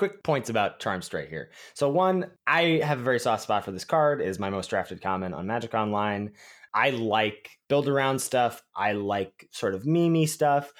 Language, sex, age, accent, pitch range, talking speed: English, male, 20-39, American, 105-145 Hz, 200 wpm